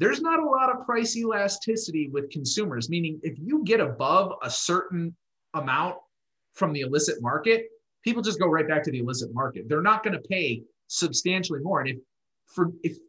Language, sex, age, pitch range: English, male, 30-49, 125-170 Hz